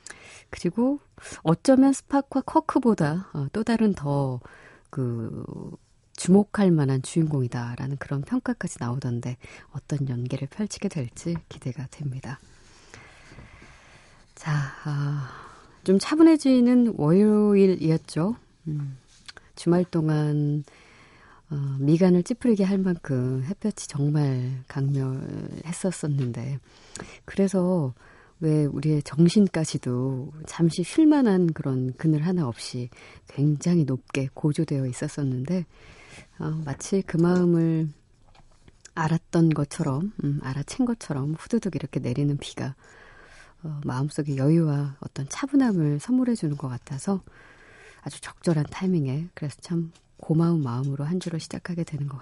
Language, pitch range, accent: Korean, 135-180 Hz, native